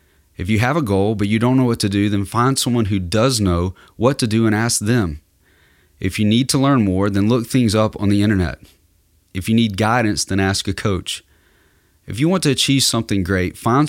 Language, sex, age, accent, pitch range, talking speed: English, male, 30-49, American, 85-115 Hz, 230 wpm